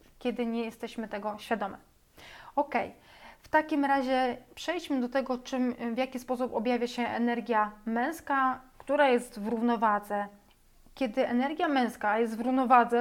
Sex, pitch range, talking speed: female, 230-250 Hz, 140 wpm